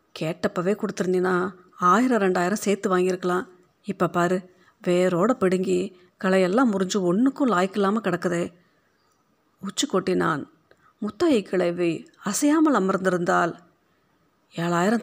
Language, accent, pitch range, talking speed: Tamil, native, 175-215 Hz, 90 wpm